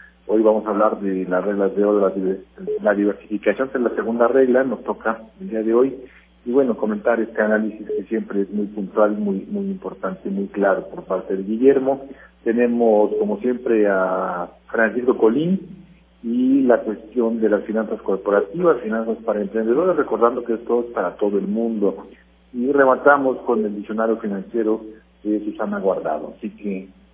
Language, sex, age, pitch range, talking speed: Spanish, male, 50-69, 105-130 Hz, 170 wpm